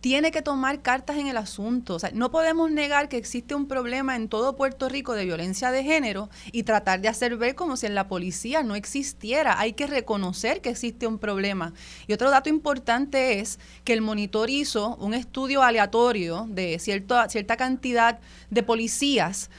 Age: 30-49